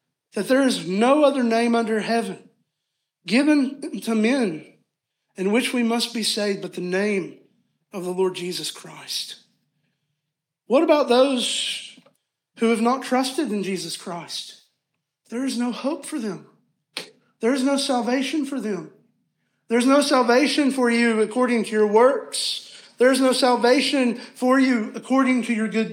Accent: American